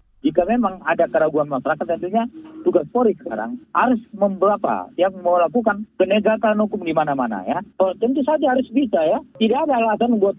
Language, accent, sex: Indonesian, native, male